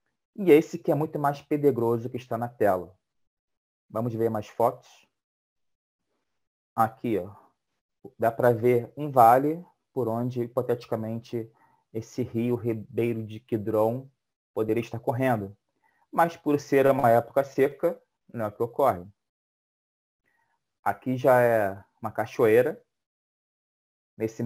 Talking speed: 125 wpm